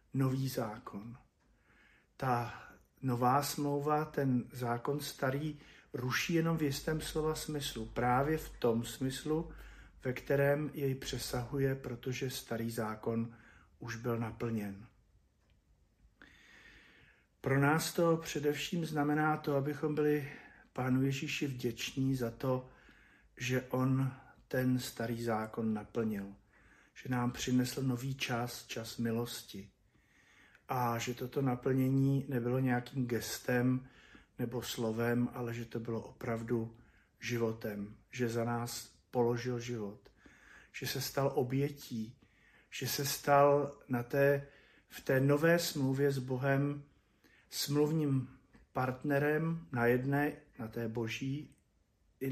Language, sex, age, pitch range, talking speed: Slovak, male, 50-69, 120-140 Hz, 110 wpm